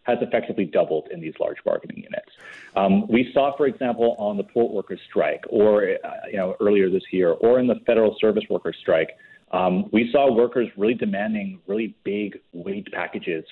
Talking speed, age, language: 185 wpm, 30-49, English